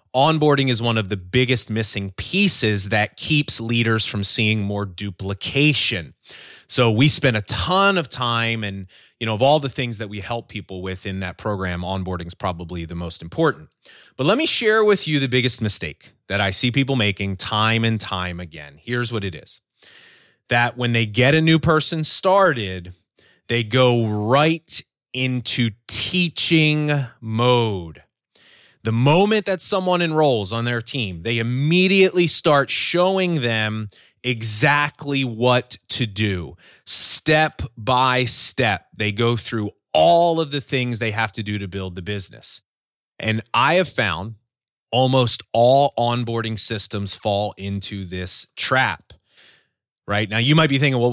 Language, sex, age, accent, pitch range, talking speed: English, male, 30-49, American, 105-140 Hz, 155 wpm